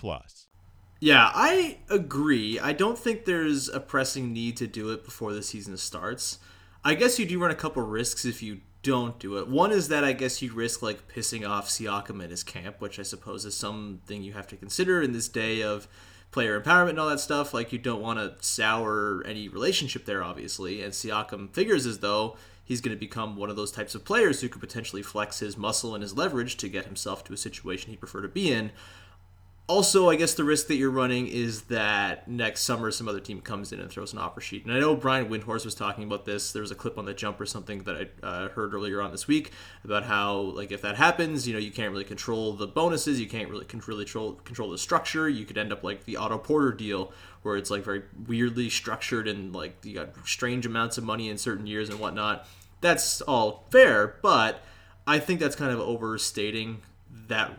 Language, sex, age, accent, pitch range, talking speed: English, male, 30-49, American, 100-125 Hz, 225 wpm